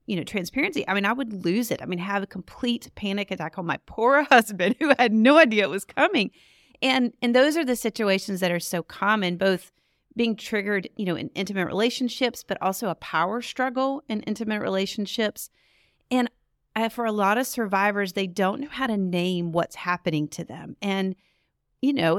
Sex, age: female, 30-49